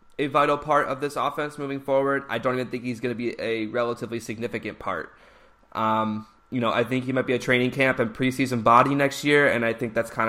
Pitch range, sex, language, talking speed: 115-135 Hz, male, English, 240 wpm